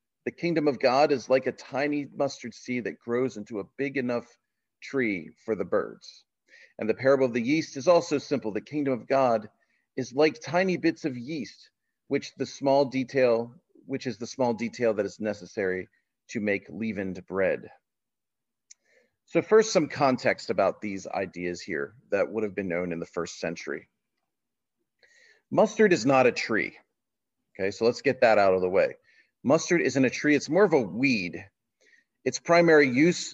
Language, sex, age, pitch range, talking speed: English, male, 40-59, 120-155 Hz, 175 wpm